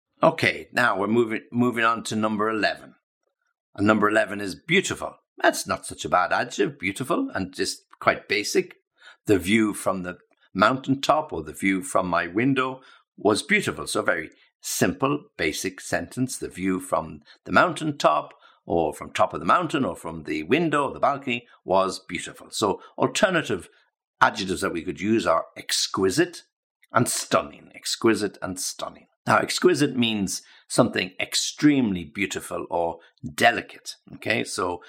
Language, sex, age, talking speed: English, male, 60-79, 150 wpm